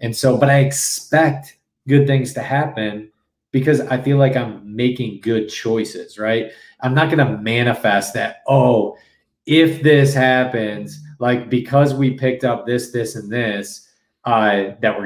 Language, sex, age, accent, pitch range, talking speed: English, male, 20-39, American, 110-135 Hz, 160 wpm